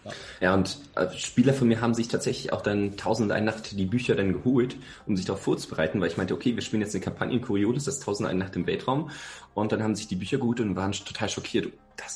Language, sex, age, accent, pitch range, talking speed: German, male, 30-49, German, 85-105 Hz, 230 wpm